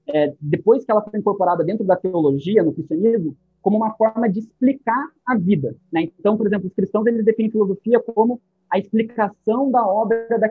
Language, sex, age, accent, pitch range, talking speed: Portuguese, male, 20-39, Brazilian, 175-235 Hz, 190 wpm